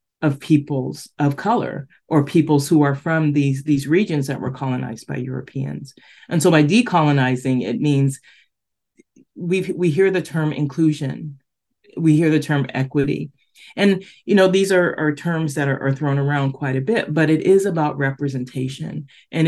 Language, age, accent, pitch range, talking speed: English, 30-49, American, 135-160 Hz, 170 wpm